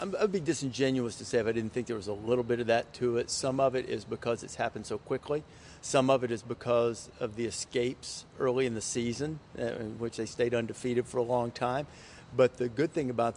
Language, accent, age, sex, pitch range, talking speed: English, American, 50-69, male, 120-145 Hz, 240 wpm